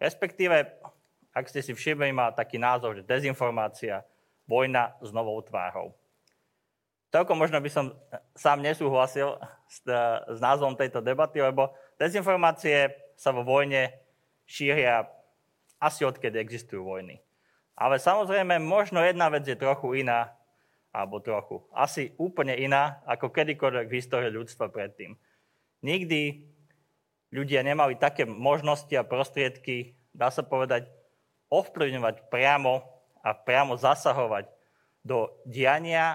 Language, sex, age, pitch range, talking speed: Slovak, male, 30-49, 120-145 Hz, 120 wpm